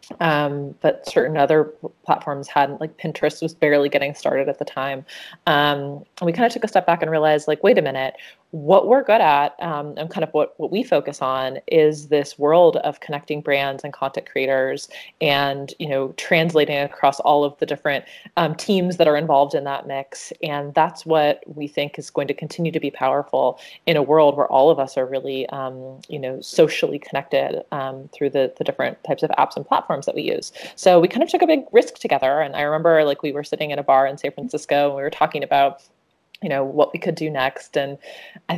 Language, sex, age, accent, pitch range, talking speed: English, female, 30-49, American, 140-165 Hz, 220 wpm